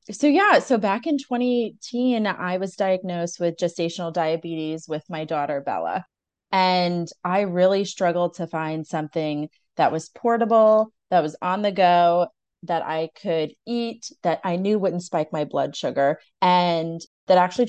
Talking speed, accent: 155 wpm, American